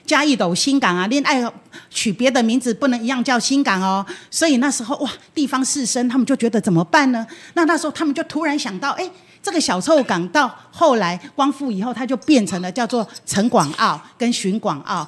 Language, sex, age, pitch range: Chinese, female, 40-59, 195-275 Hz